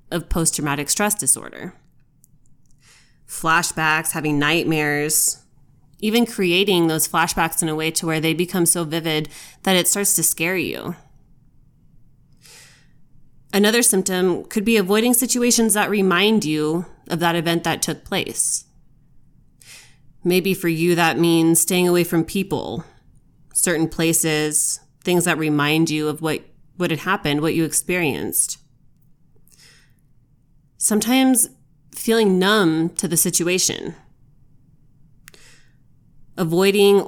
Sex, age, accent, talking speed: female, 20-39, American, 115 wpm